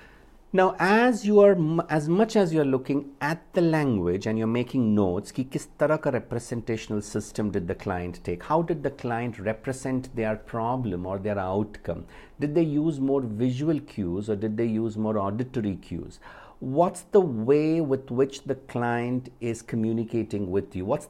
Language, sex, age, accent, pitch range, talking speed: English, male, 50-69, Indian, 105-155 Hz, 170 wpm